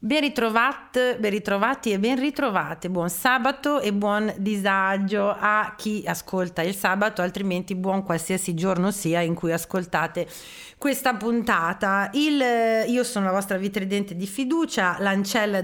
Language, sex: Italian, female